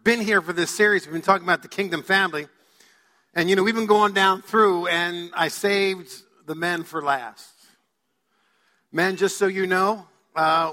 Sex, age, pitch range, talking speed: male, 50-69, 180-230 Hz, 185 wpm